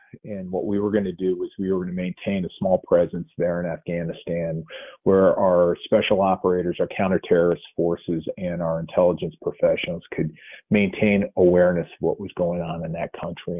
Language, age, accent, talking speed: English, 40-59, American, 180 wpm